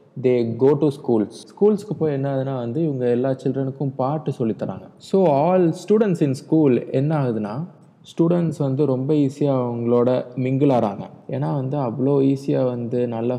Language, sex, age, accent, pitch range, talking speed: Tamil, male, 20-39, native, 120-150 Hz, 165 wpm